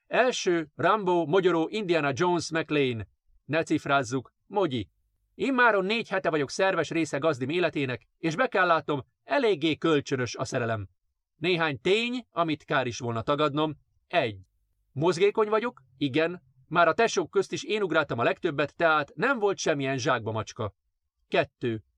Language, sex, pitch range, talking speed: Hungarian, male, 125-185 Hz, 145 wpm